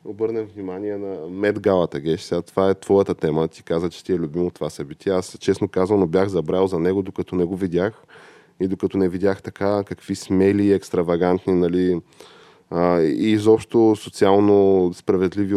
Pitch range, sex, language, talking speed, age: 90-100 Hz, male, Bulgarian, 160 wpm, 20-39